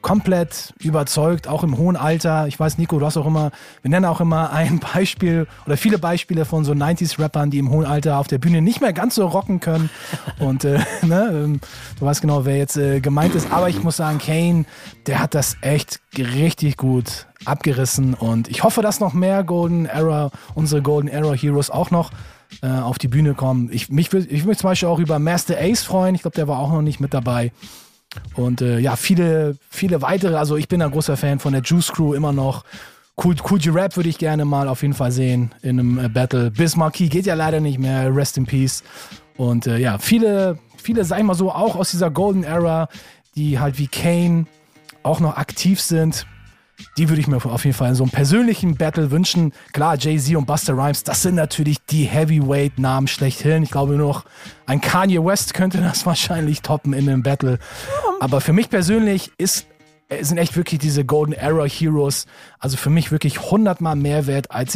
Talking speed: 205 wpm